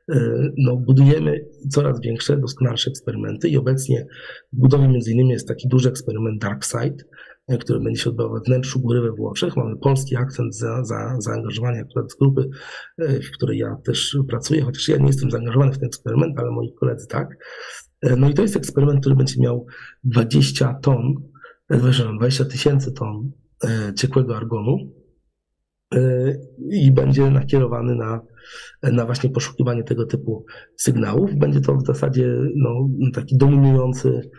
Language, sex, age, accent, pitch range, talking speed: Polish, male, 40-59, native, 120-135 Hz, 140 wpm